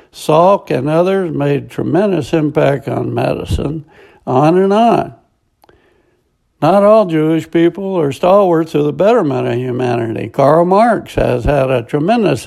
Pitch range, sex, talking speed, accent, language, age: 145-180 Hz, male, 135 wpm, American, English, 60-79